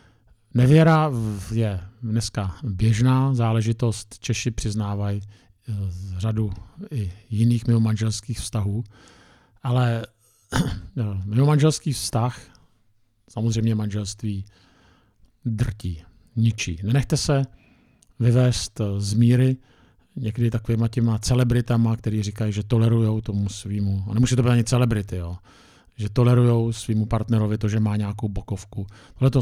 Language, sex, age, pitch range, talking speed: Czech, male, 50-69, 105-125 Hz, 110 wpm